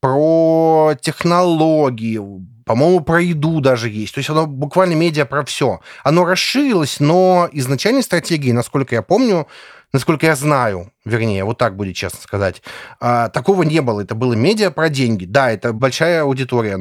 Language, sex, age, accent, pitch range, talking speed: Russian, male, 30-49, native, 130-180 Hz, 155 wpm